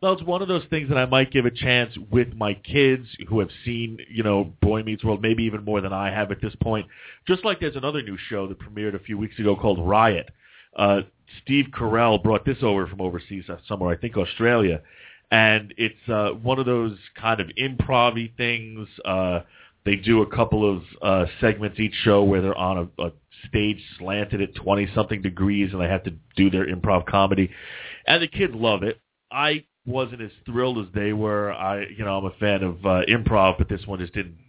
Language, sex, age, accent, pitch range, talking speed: English, male, 30-49, American, 95-115 Hz, 210 wpm